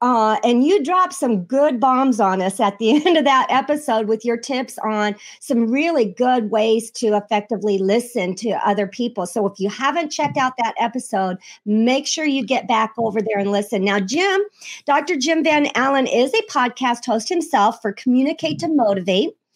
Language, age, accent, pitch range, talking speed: English, 50-69, American, 225-290 Hz, 185 wpm